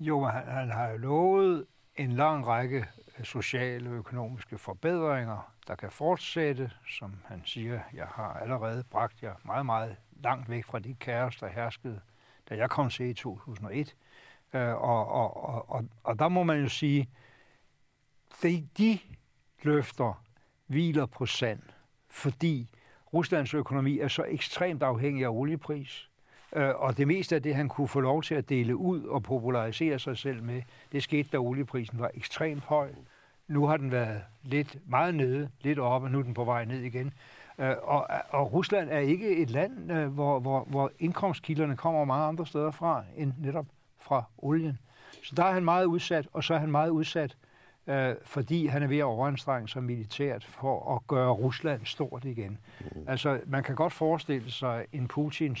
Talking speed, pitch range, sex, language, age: 180 wpm, 125-150 Hz, male, Danish, 60-79